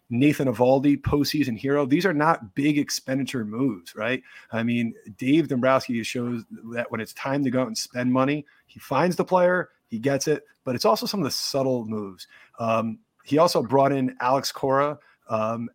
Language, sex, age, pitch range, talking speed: English, male, 30-49, 115-140 Hz, 185 wpm